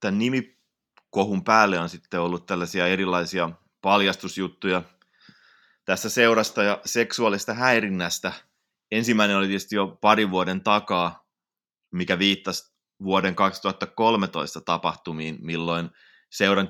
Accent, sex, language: native, male, Finnish